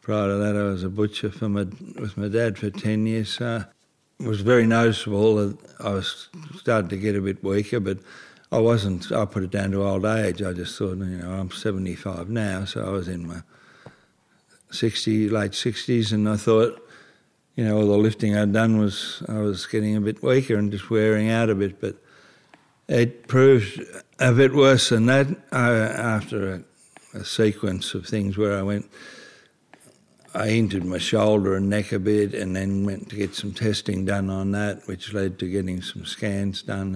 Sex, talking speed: male, 190 wpm